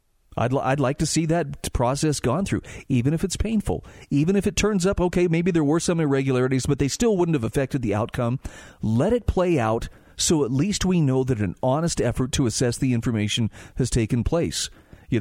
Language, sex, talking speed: English, male, 215 wpm